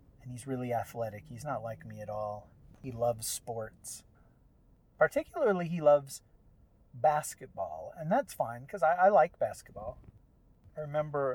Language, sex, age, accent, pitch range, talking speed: English, male, 40-59, American, 105-130 Hz, 145 wpm